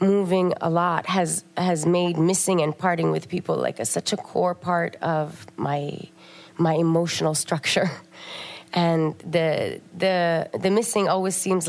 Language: English